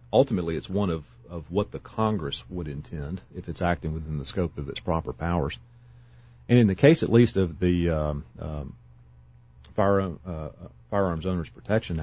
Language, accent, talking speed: English, American, 175 wpm